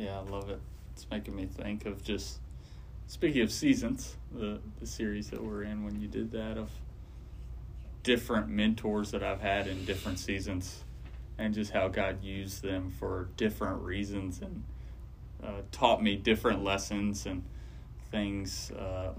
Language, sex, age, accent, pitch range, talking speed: English, male, 20-39, American, 95-105 Hz, 155 wpm